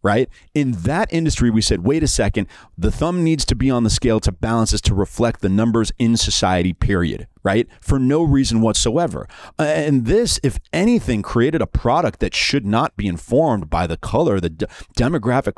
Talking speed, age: 190 wpm, 40-59